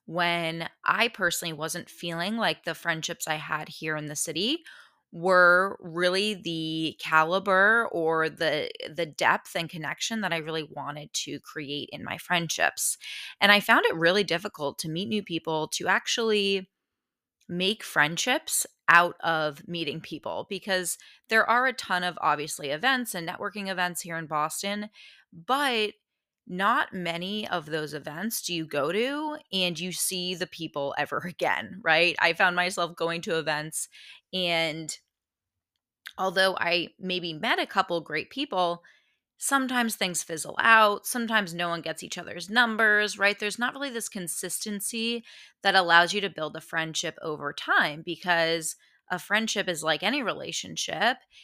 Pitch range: 160-210 Hz